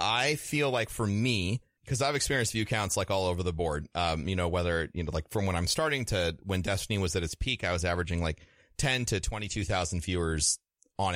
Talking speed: 225 wpm